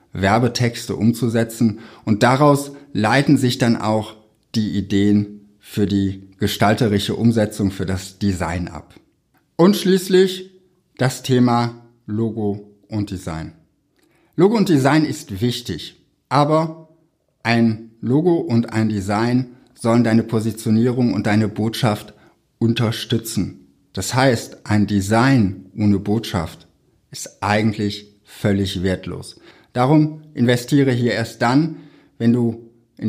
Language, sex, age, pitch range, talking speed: German, male, 60-79, 105-140 Hz, 110 wpm